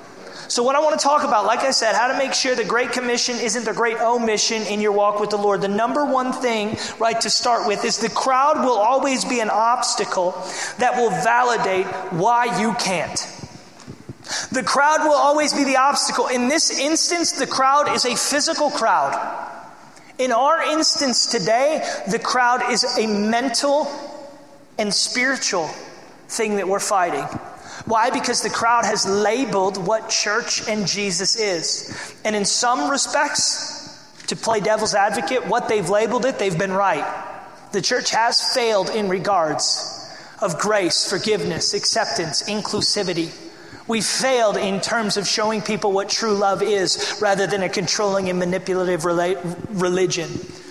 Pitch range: 205-255 Hz